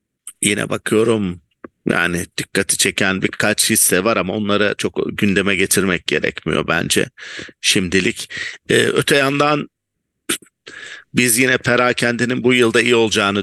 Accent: Turkish